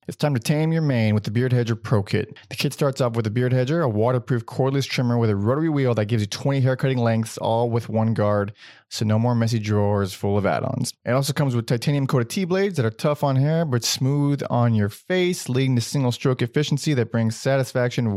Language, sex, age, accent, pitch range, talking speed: English, male, 30-49, American, 115-140 Hz, 235 wpm